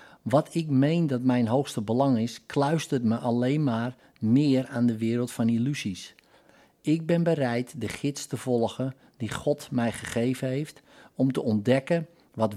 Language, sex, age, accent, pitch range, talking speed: Dutch, male, 50-69, Dutch, 115-145 Hz, 160 wpm